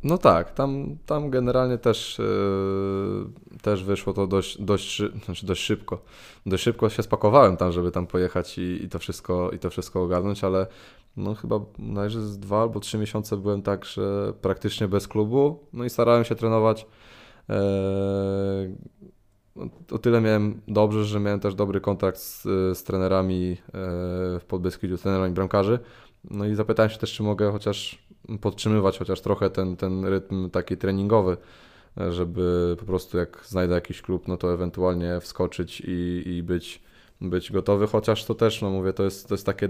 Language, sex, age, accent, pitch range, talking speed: Polish, male, 20-39, native, 90-110 Hz, 165 wpm